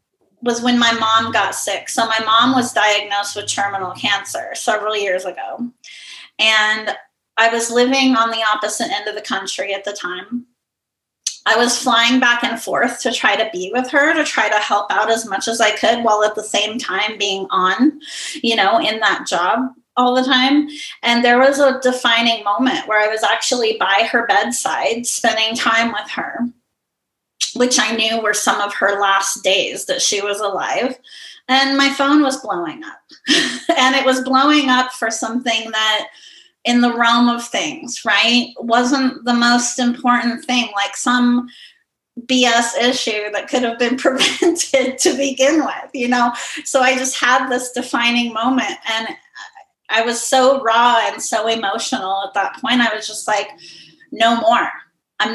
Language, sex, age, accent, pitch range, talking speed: English, female, 30-49, American, 215-255 Hz, 175 wpm